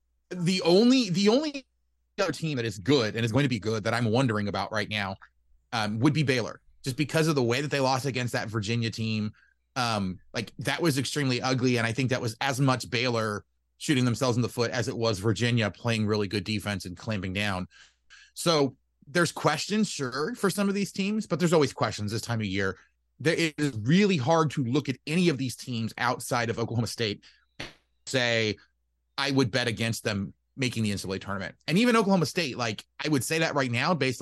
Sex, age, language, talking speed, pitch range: male, 30-49, English, 210 wpm, 110-145 Hz